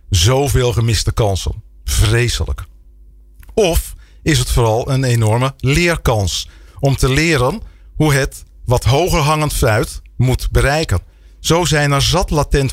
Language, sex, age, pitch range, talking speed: Dutch, male, 40-59, 105-140 Hz, 125 wpm